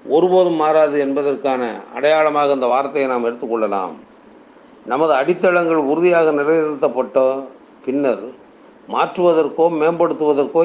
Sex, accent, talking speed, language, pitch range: male, native, 85 wpm, Tamil, 140-170 Hz